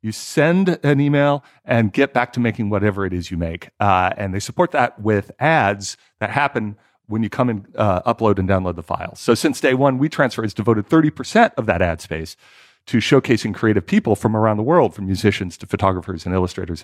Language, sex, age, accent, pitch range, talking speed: English, male, 40-59, American, 95-135 Hz, 215 wpm